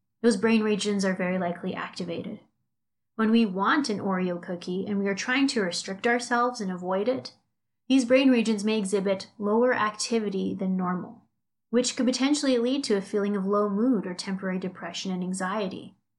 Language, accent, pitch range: English, American, 190-235 Hz